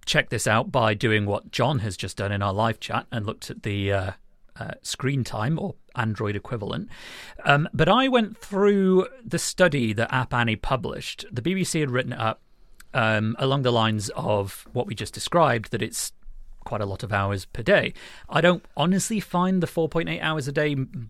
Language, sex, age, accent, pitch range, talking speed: English, male, 40-59, British, 110-150 Hz, 195 wpm